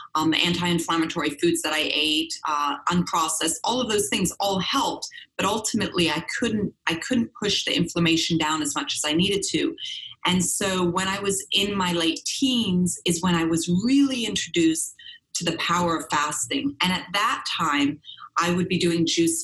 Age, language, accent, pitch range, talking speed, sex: 30-49, English, American, 160-210 Hz, 185 wpm, female